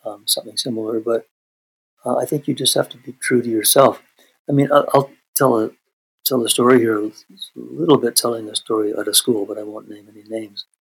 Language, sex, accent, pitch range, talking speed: English, male, American, 105-125 Hz, 225 wpm